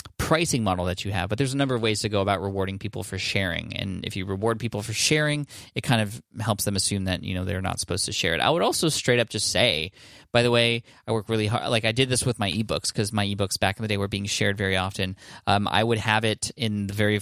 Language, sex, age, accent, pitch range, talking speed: English, male, 20-39, American, 100-120 Hz, 280 wpm